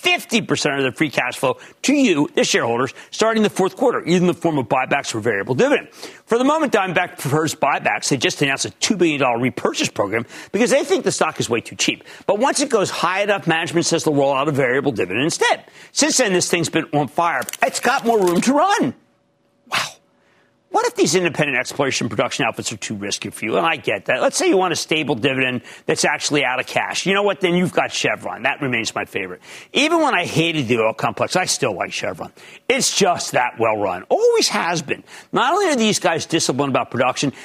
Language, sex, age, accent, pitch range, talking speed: English, male, 40-59, American, 150-220 Hz, 225 wpm